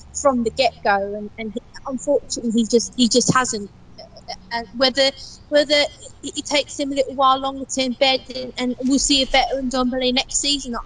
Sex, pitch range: female, 225-265 Hz